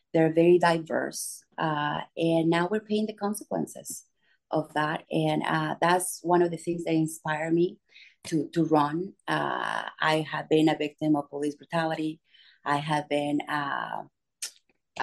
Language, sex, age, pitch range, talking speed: English, female, 30-49, 155-180 Hz, 150 wpm